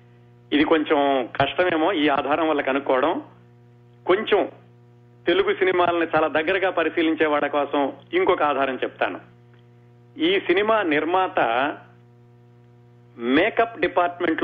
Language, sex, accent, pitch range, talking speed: Telugu, male, native, 120-175 Hz, 95 wpm